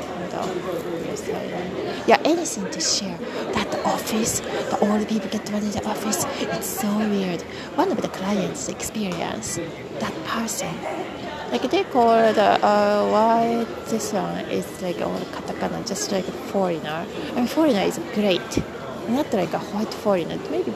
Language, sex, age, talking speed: English, female, 30-49, 155 wpm